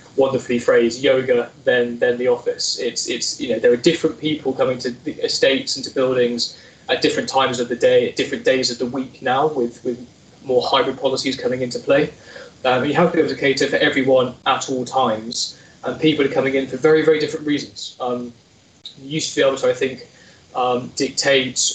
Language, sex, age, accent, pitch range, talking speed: English, male, 20-39, British, 120-150 Hz, 210 wpm